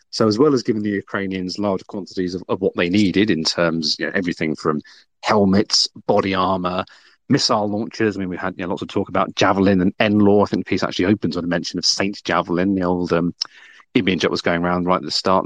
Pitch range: 95-115 Hz